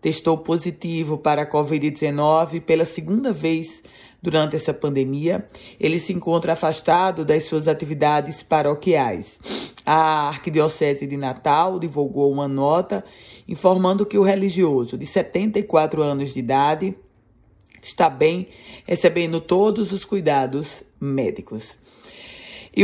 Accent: Brazilian